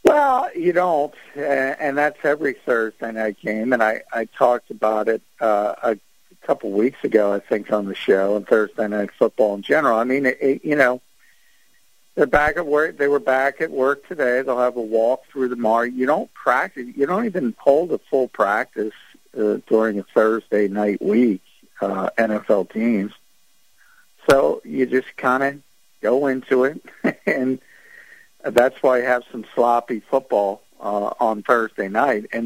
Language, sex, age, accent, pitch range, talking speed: English, male, 50-69, American, 110-130 Hz, 170 wpm